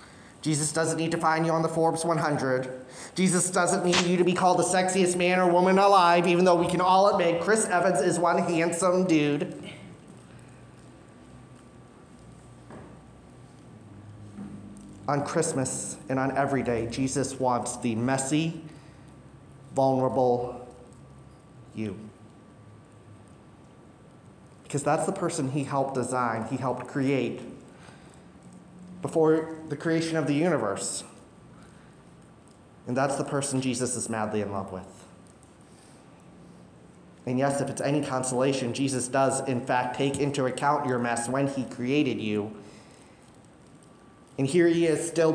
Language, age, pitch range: English, 30-49, 125-170 Hz